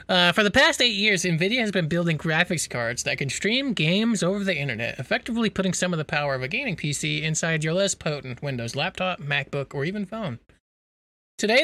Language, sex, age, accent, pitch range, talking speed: English, male, 30-49, American, 150-195 Hz, 205 wpm